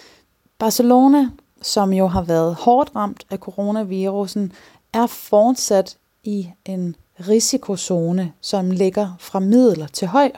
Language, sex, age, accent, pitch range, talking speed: Danish, female, 30-49, native, 170-215 Hz, 115 wpm